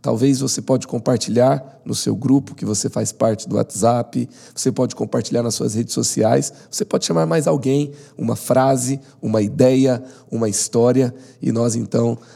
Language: Portuguese